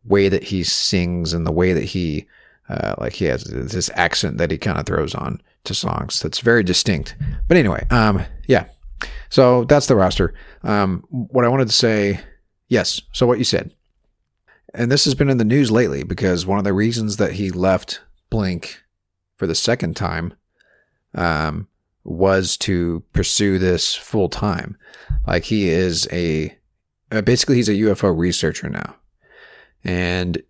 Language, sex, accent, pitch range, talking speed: English, male, American, 85-105 Hz, 165 wpm